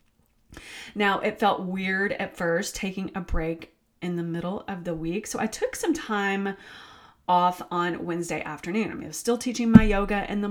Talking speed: 195 wpm